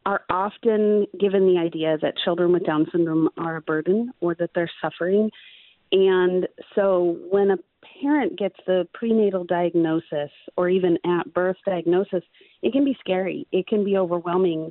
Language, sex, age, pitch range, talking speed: English, female, 40-59, 175-200 Hz, 160 wpm